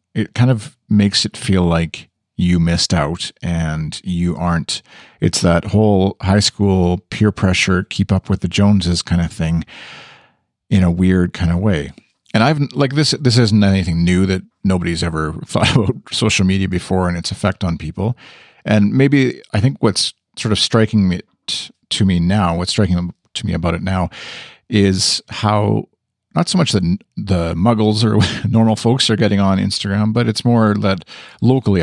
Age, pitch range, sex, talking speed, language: 40-59, 90-110 Hz, male, 175 wpm, English